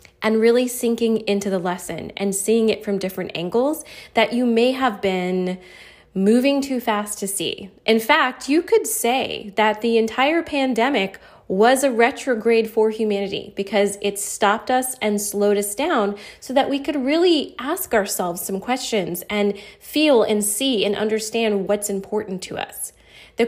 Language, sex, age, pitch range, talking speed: English, female, 20-39, 200-250 Hz, 165 wpm